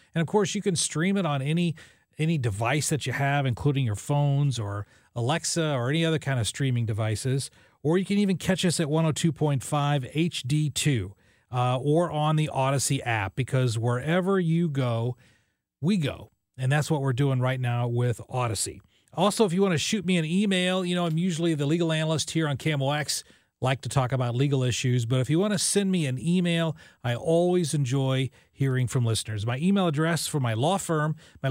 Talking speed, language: 200 wpm, English